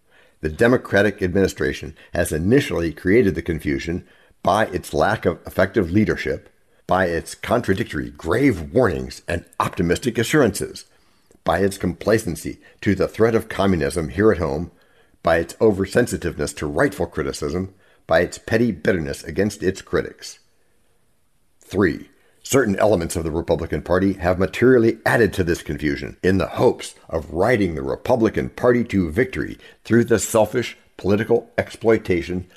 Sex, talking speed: male, 135 wpm